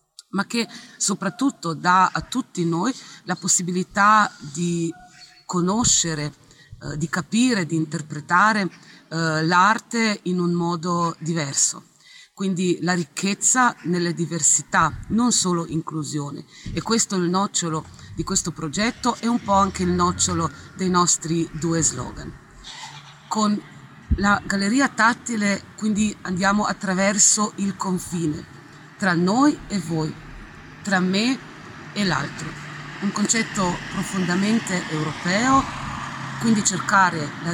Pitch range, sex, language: 160-205 Hz, female, Italian